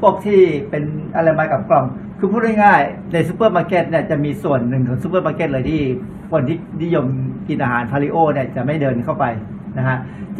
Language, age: Thai, 60-79